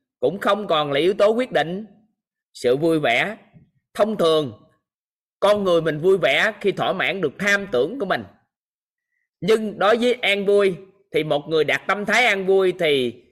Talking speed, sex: 180 wpm, male